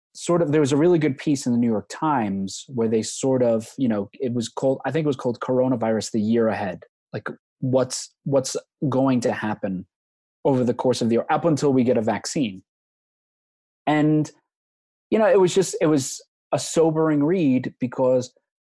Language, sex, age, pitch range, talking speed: English, male, 20-39, 110-140 Hz, 195 wpm